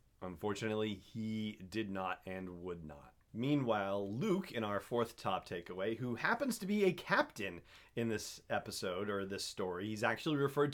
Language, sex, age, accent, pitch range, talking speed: English, male, 30-49, American, 105-140 Hz, 160 wpm